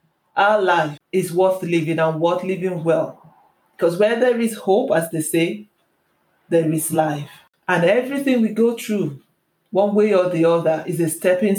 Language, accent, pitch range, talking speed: English, Nigerian, 170-215 Hz, 170 wpm